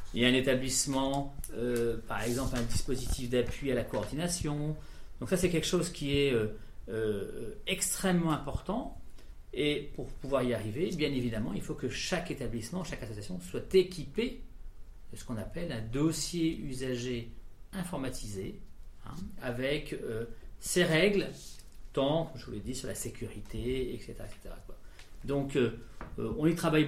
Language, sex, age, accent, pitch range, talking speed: French, male, 40-59, French, 120-170 Hz, 160 wpm